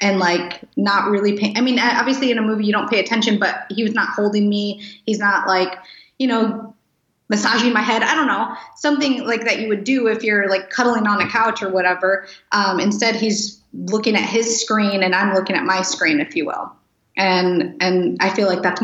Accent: American